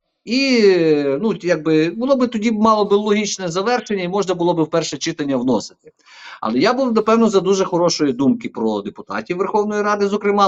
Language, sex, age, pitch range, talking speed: Ukrainian, male, 50-69, 135-190 Hz, 170 wpm